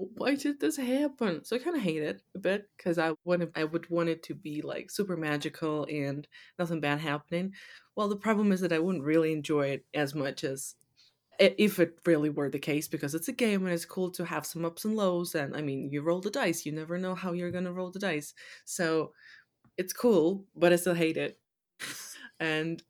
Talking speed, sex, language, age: 225 wpm, female, English, 20-39